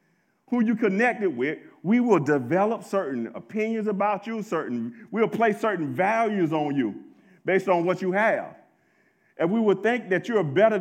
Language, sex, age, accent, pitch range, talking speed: English, male, 40-59, American, 180-225 Hz, 165 wpm